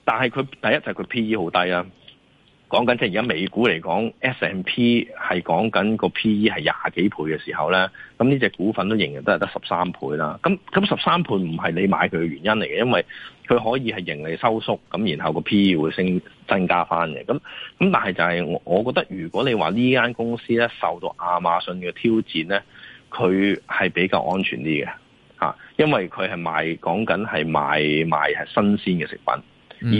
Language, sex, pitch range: Chinese, male, 85-115 Hz